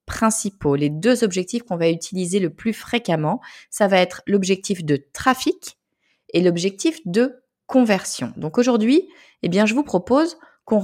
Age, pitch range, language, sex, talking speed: 30-49, 165-250 Hz, French, female, 140 wpm